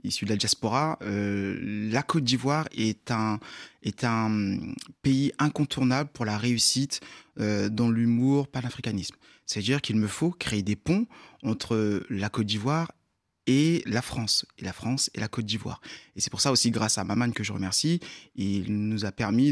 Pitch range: 110-140 Hz